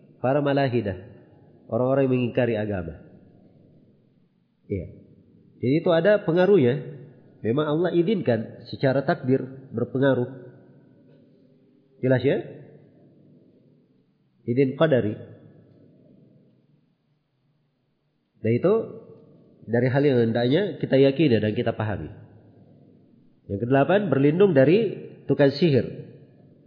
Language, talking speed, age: Indonesian, 85 wpm, 40-59